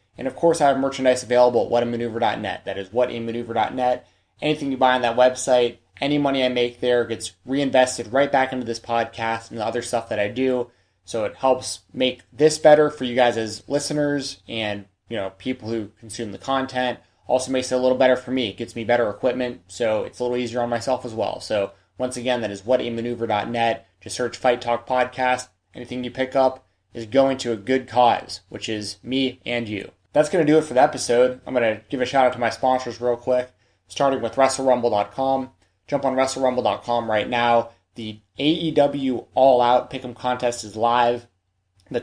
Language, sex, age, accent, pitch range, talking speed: English, male, 20-39, American, 115-130 Hz, 200 wpm